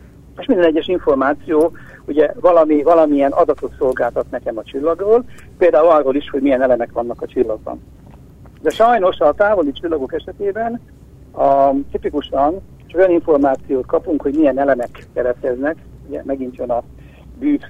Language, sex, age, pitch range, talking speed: Hungarian, male, 60-79, 135-215 Hz, 140 wpm